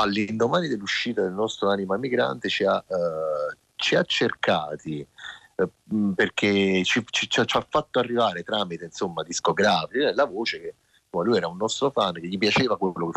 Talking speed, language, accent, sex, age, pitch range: 160 wpm, Italian, native, male, 30-49, 90-115 Hz